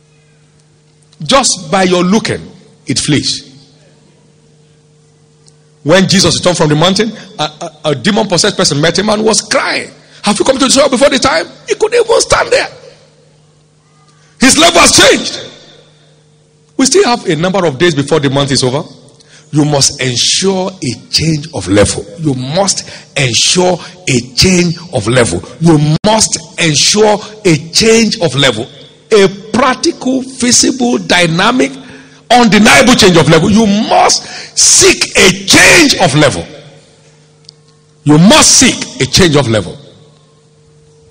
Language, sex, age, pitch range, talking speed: English, male, 50-69, 150-210 Hz, 140 wpm